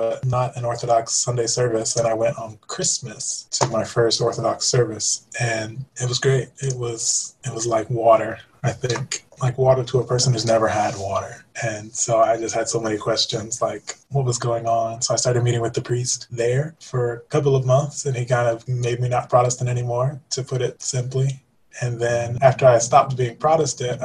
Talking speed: 205 wpm